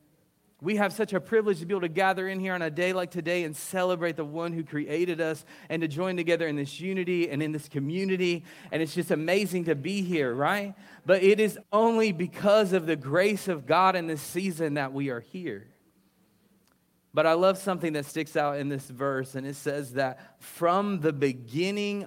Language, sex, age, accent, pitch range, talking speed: English, male, 30-49, American, 145-195 Hz, 210 wpm